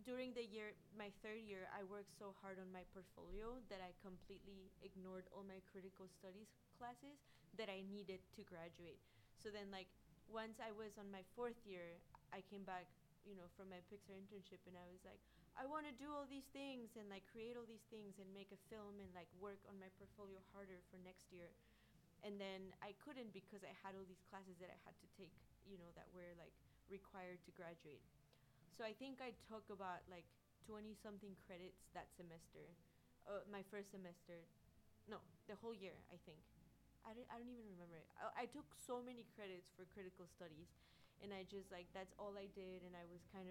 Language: English